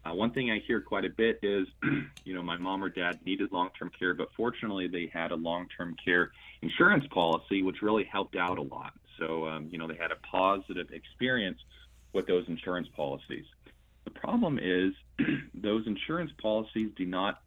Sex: male